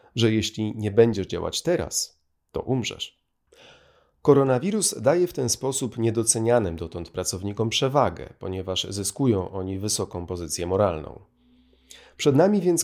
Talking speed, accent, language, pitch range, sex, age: 120 wpm, native, Polish, 95-115 Hz, male, 30-49